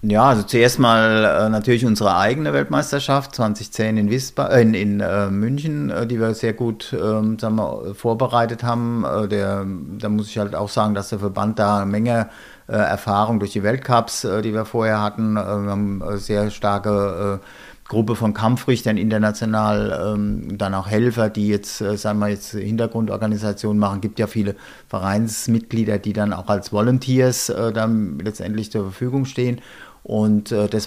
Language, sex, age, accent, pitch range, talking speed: German, male, 50-69, German, 100-115 Hz, 155 wpm